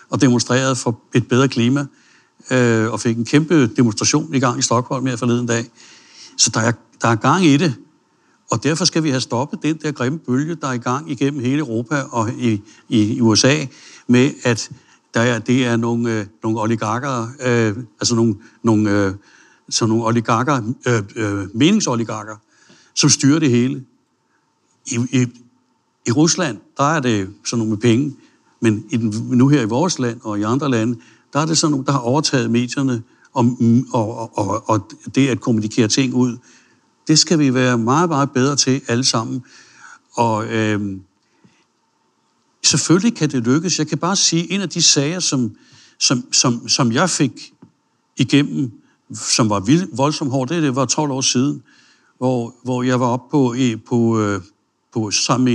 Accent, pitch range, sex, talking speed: native, 115-140 Hz, male, 175 wpm